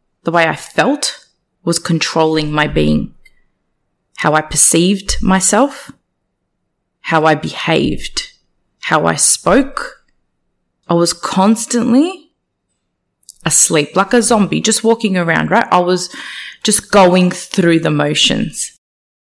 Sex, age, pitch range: female, 20-39, 155-195 Hz